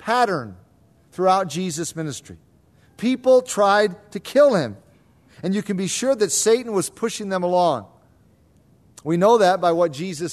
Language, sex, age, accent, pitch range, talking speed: English, male, 40-59, American, 160-215 Hz, 150 wpm